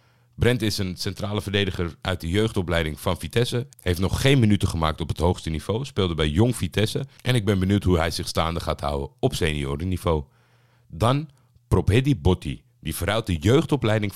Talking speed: 180 wpm